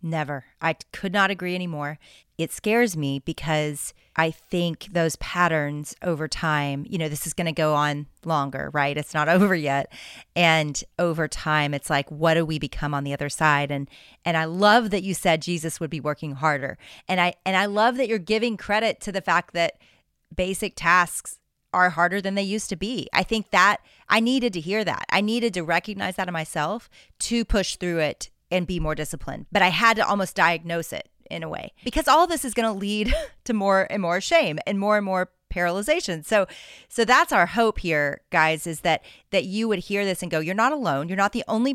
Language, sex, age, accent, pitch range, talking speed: English, female, 30-49, American, 155-200 Hz, 215 wpm